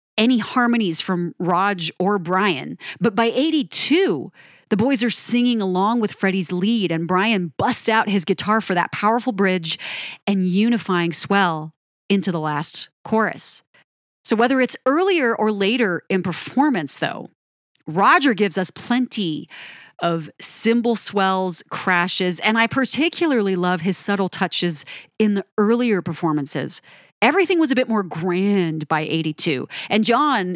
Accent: American